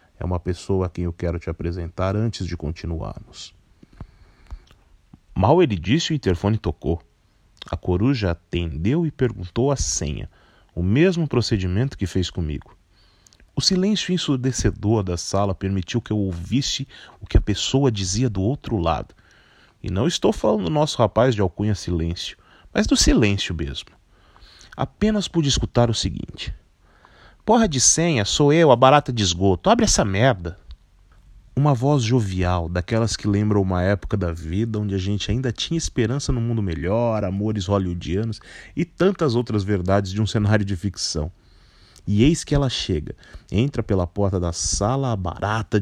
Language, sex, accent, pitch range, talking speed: Portuguese, male, Brazilian, 90-120 Hz, 160 wpm